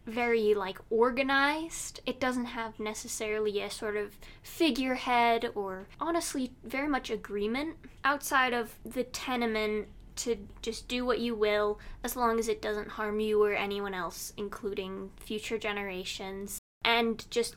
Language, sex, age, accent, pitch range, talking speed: English, female, 10-29, American, 210-270 Hz, 140 wpm